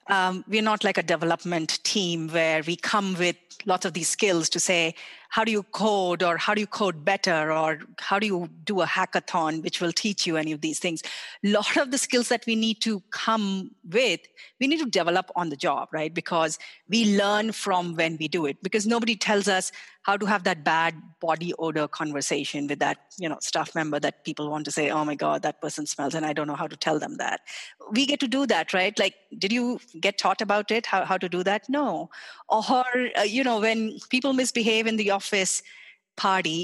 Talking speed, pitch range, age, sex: 225 wpm, 165-210 Hz, 30-49, female